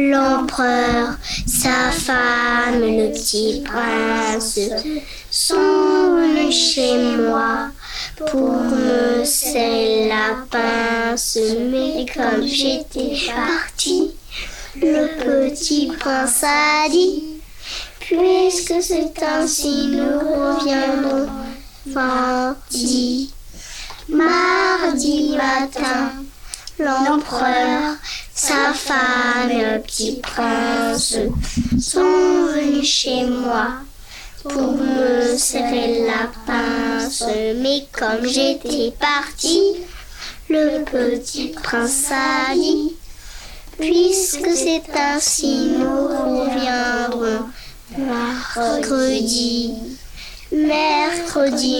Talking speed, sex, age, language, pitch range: 75 wpm, male, 10-29, French, 240-295 Hz